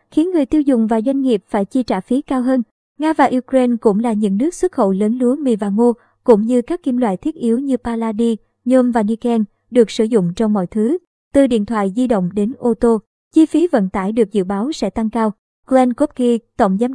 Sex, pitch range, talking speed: male, 215-265 Hz, 235 wpm